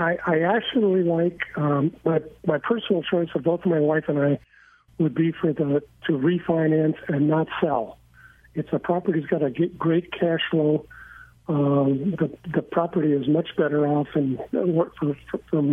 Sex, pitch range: male, 145-170 Hz